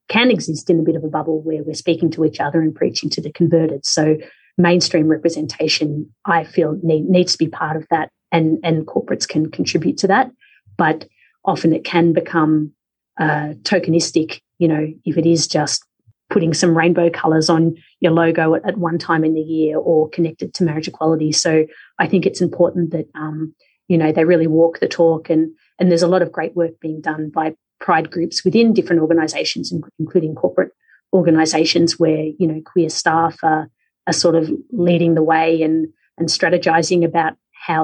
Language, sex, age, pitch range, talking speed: English, female, 30-49, 160-175 Hz, 190 wpm